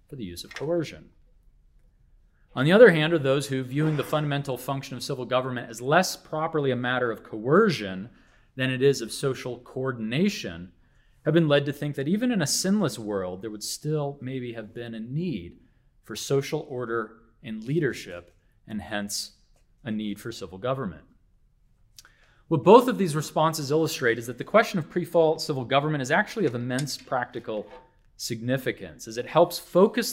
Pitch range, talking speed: 110-155 Hz, 175 wpm